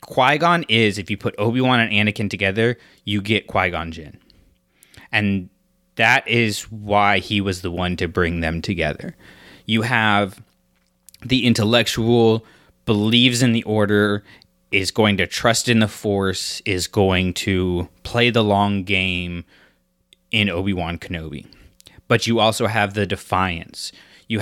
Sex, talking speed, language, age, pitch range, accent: male, 140 wpm, English, 20-39, 90-110 Hz, American